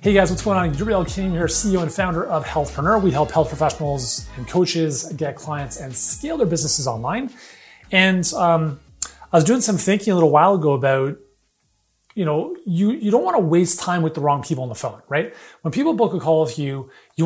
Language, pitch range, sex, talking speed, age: English, 145-190 Hz, male, 220 wpm, 30-49